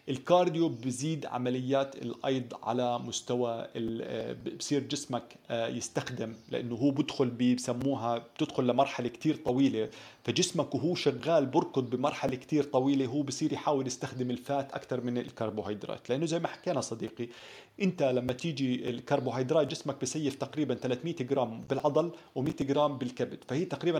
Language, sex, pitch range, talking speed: Arabic, male, 125-160 Hz, 135 wpm